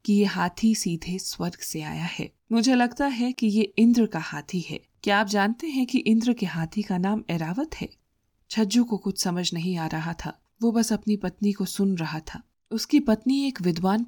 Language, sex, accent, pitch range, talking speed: Hindi, female, native, 180-245 Hz, 215 wpm